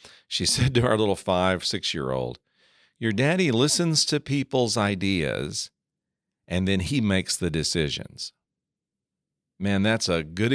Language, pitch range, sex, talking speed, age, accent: English, 90-130 Hz, male, 130 wpm, 50-69, American